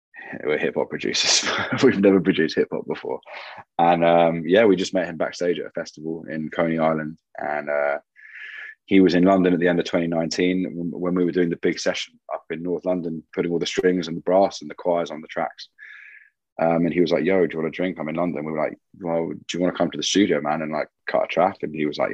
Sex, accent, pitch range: male, British, 80-90 Hz